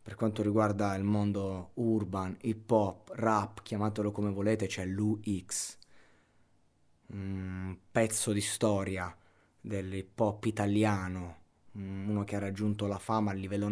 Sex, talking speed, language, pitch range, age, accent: male, 130 wpm, Italian, 95-110 Hz, 20-39, native